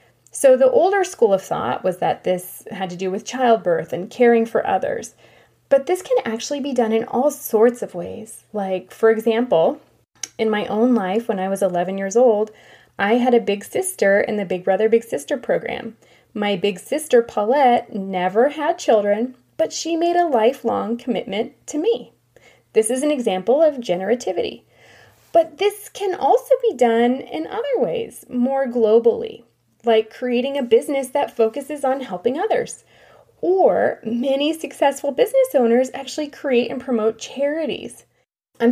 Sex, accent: female, American